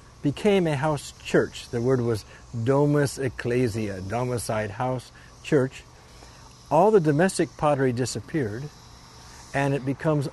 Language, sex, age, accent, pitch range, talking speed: English, male, 60-79, American, 110-150 Hz, 115 wpm